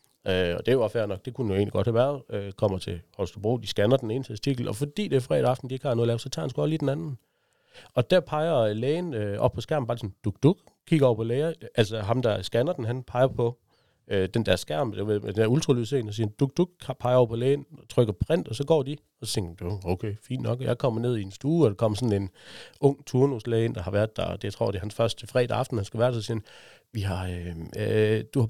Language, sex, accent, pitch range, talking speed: Danish, male, native, 110-135 Hz, 280 wpm